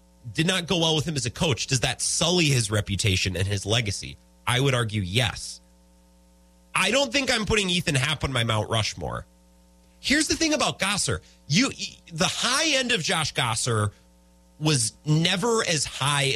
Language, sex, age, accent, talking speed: English, male, 30-49, American, 175 wpm